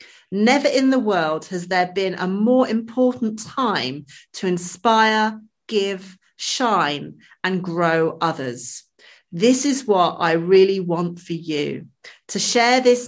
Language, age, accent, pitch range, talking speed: English, 40-59, British, 170-215 Hz, 135 wpm